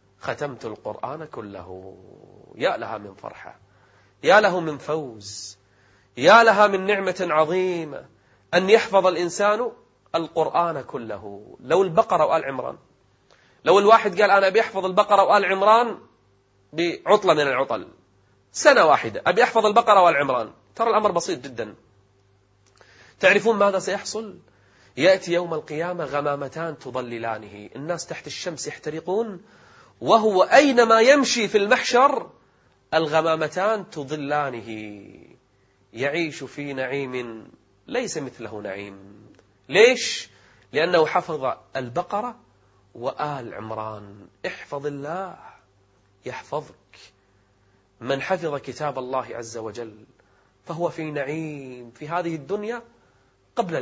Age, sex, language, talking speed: 30-49, male, Arabic, 105 wpm